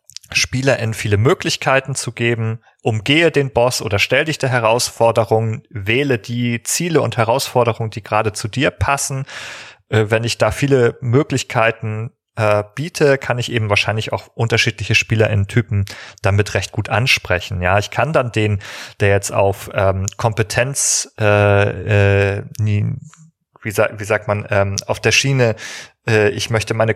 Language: German